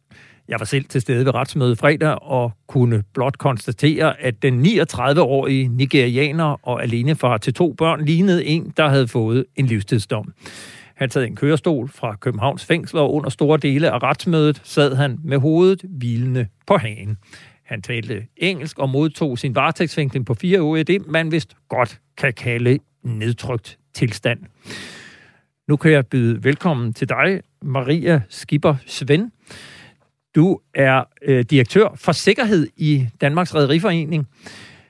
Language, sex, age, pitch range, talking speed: Danish, male, 60-79, 125-155 Hz, 145 wpm